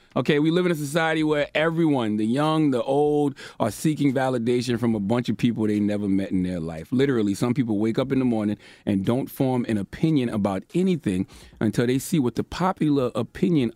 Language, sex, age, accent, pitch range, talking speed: English, male, 30-49, American, 110-170 Hz, 210 wpm